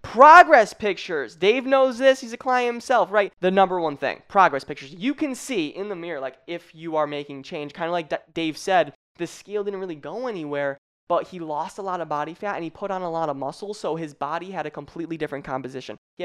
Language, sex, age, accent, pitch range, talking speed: English, male, 20-39, American, 150-200 Hz, 235 wpm